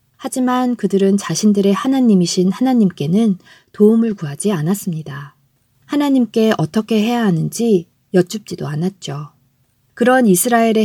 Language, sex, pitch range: Korean, female, 165-215 Hz